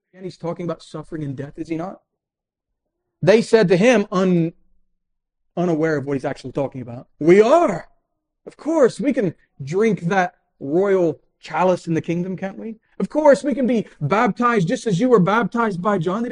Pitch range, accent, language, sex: 150-205 Hz, American, English, male